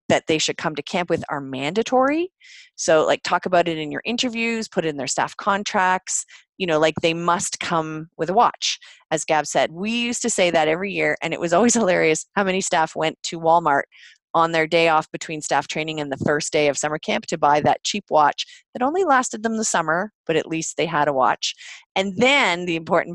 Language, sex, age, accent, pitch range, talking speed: English, female, 30-49, American, 155-210 Hz, 230 wpm